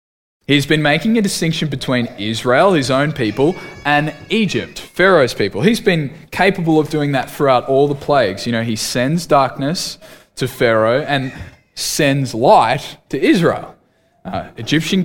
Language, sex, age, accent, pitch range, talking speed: English, male, 20-39, Australian, 110-170 Hz, 150 wpm